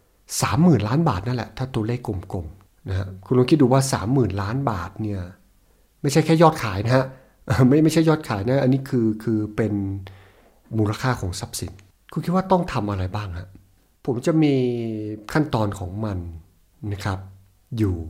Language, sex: Thai, male